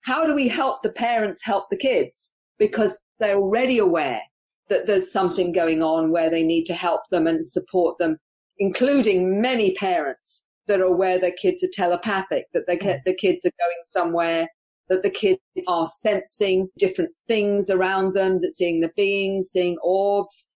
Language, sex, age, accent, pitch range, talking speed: English, female, 40-59, British, 175-230 Hz, 170 wpm